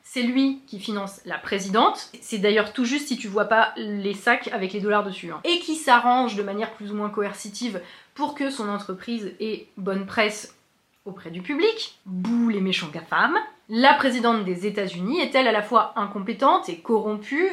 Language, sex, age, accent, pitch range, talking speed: French, female, 30-49, French, 205-275 Hz, 190 wpm